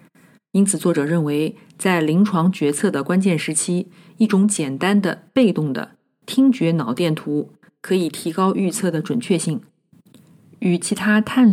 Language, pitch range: Chinese, 160-205 Hz